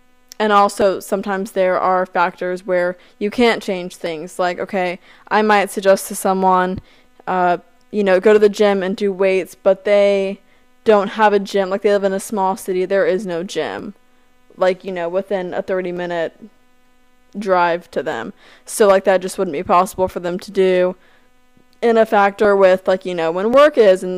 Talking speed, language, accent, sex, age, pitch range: 190 wpm, English, American, female, 20-39, 185-230 Hz